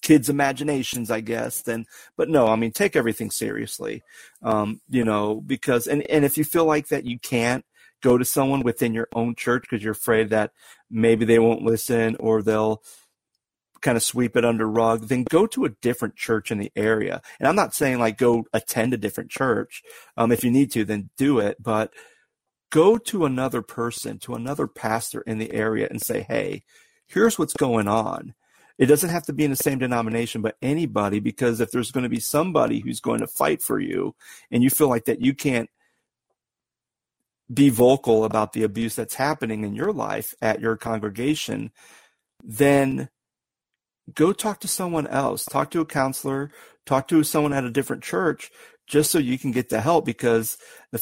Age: 40-59